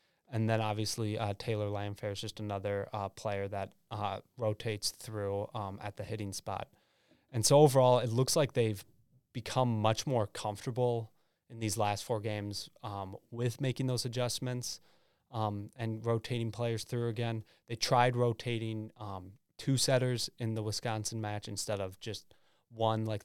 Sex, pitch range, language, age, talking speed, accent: male, 105-120 Hz, English, 20-39, 160 wpm, American